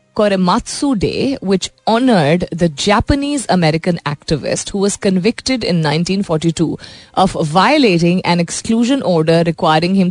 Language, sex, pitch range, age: Hindi, female, 160-200 Hz, 30-49